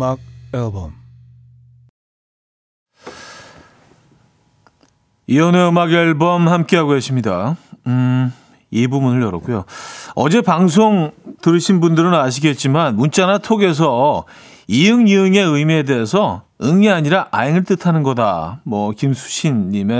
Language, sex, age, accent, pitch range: Korean, male, 40-59, native, 120-175 Hz